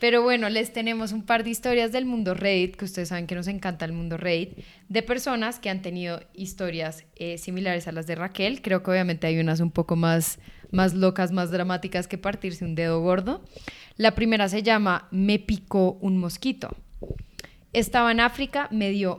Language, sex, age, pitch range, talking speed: Spanish, female, 10-29, 175-215 Hz, 195 wpm